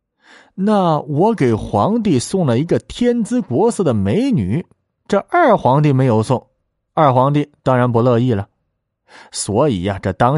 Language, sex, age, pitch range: Chinese, male, 20-39, 100-145 Hz